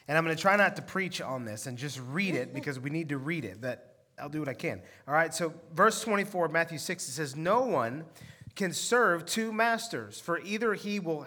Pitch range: 135-205 Hz